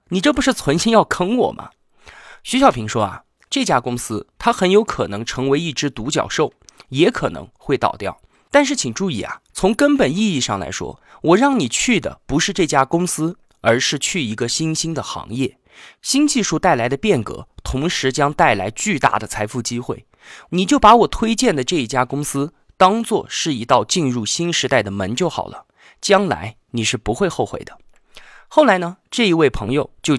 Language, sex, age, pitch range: Chinese, male, 20-39, 125-205 Hz